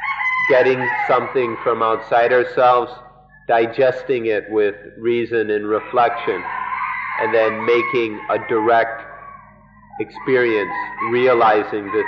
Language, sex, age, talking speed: English, male, 30-49, 95 wpm